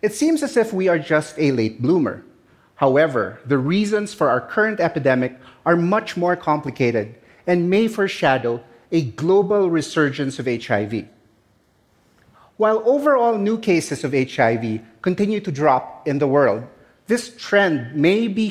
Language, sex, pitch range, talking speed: English, male, 140-195 Hz, 145 wpm